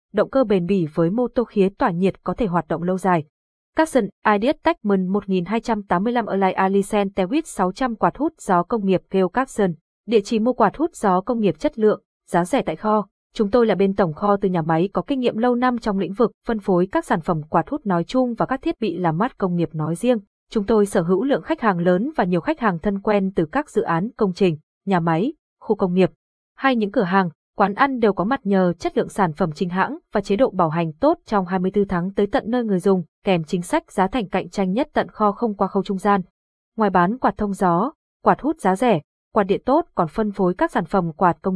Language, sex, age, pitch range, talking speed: Vietnamese, female, 20-39, 180-235 Hz, 245 wpm